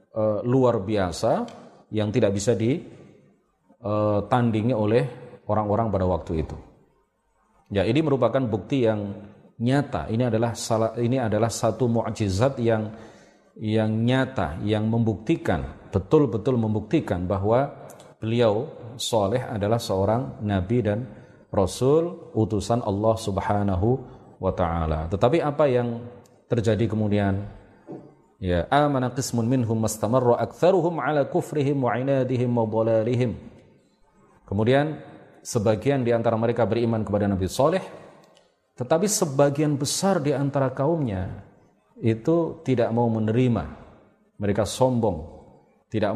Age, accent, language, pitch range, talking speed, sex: 40-59, native, Indonesian, 105-130 Hz, 90 wpm, male